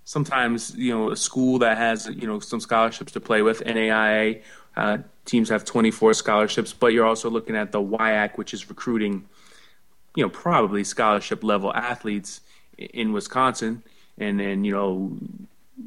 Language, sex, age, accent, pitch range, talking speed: English, male, 20-39, American, 105-130 Hz, 165 wpm